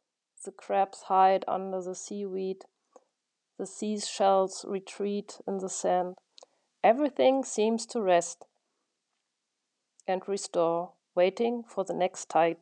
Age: 40-59